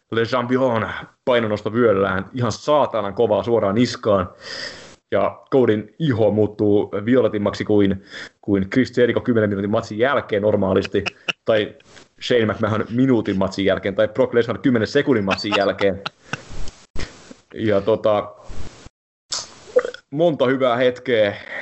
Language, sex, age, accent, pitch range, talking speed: English, male, 30-49, Finnish, 105-130 Hz, 115 wpm